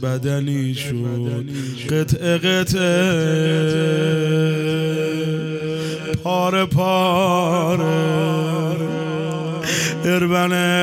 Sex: male